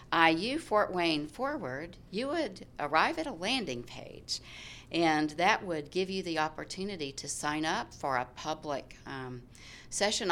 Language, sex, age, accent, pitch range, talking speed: English, female, 60-79, American, 140-200 Hz, 150 wpm